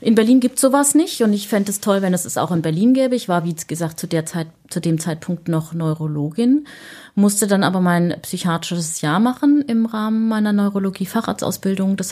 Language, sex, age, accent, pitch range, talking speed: German, female, 30-49, German, 160-200 Hz, 210 wpm